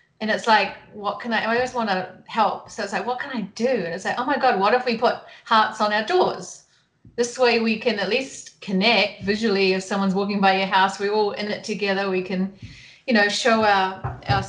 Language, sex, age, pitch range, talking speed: English, female, 30-49, 195-225 Hz, 240 wpm